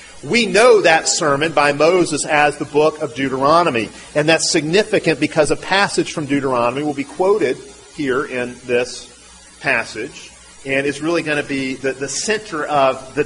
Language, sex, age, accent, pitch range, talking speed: English, male, 40-59, American, 130-180 Hz, 170 wpm